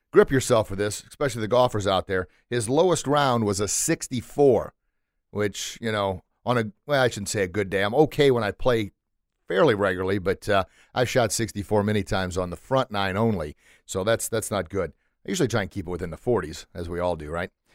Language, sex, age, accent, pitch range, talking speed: English, male, 40-59, American, 105-145 Hz, 220 wpm